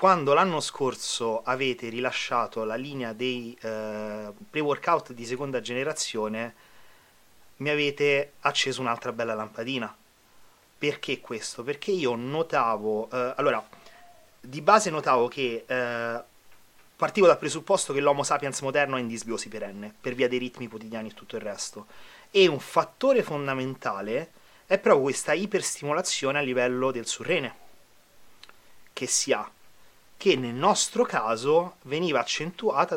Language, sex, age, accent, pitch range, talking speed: Italian, male, 30-49, native, 120-150 Hz, 130 wpm